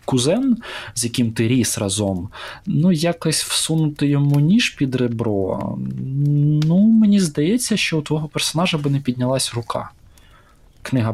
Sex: male